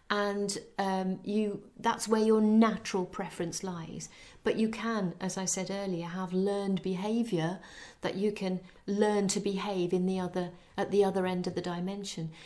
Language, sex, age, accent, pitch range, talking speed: English, female, 40-59, British, 175-220 Hz, 170 wpm